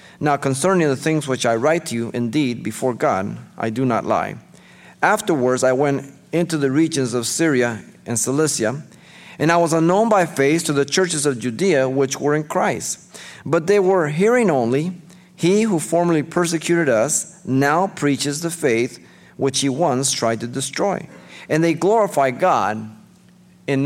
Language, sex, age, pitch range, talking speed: English, male, 40-59, 135-180 Hz, 165 wpm